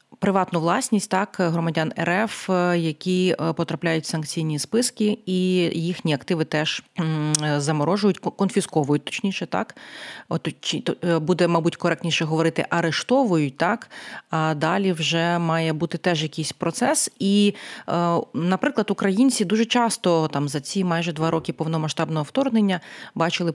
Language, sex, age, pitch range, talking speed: Ukrainian, female, 30-49, 155-185 Hz, 115 wpm